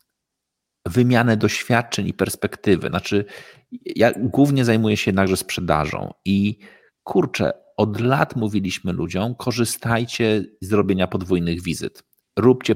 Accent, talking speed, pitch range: native, 110 wpm, 95-120 Hz